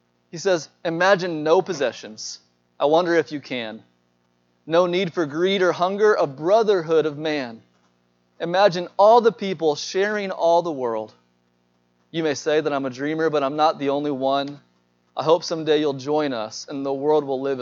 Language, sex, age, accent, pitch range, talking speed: English, male, 30-49, American, 125-170 Hz, 175 wpm